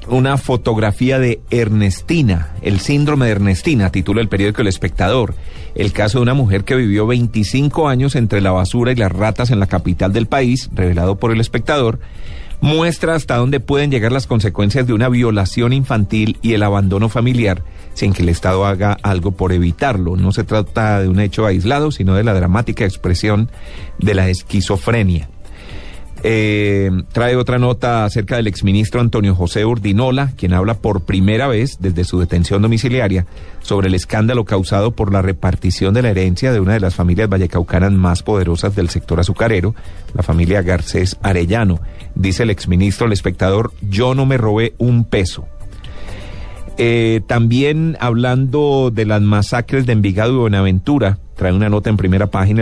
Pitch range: 95-120 Hz